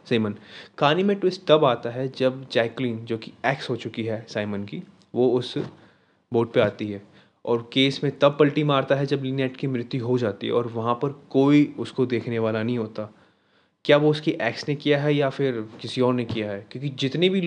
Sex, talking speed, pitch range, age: male, 215 wpm, 115-140 Hz, 20-39